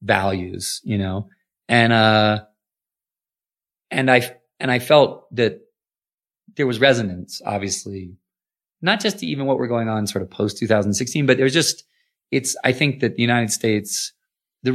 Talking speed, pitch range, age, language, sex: 150 wpm, 100-125 Hz, 30-49, English, male